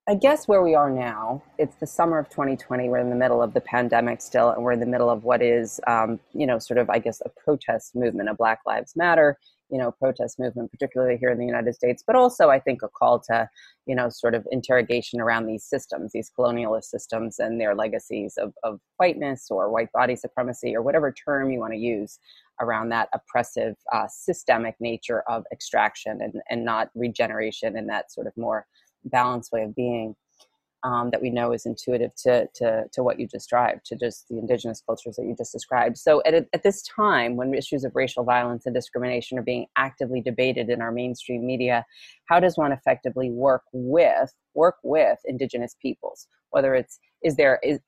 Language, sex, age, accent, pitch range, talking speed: English, female, 30-49, American, 120-130 Hz, 205 wpm